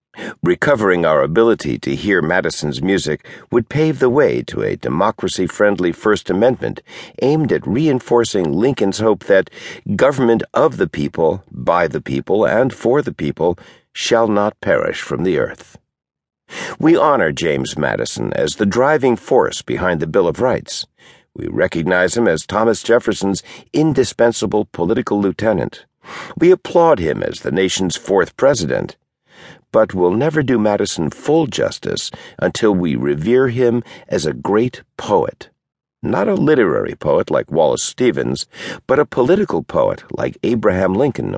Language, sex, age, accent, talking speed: English, male, 60-79, American, 140 wpm